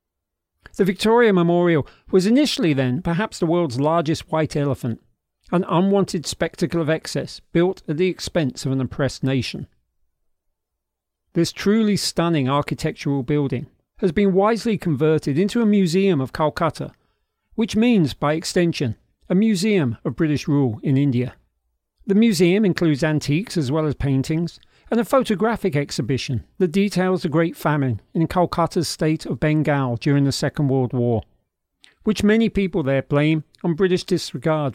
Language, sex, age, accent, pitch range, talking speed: English, male, 40-59, British, 135-180 Hz, 145 wpm